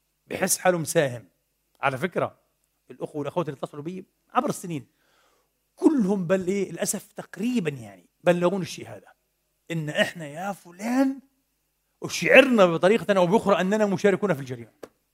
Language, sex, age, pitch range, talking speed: Arabic, male, 40-59, 155-210 Hz, 125 wpm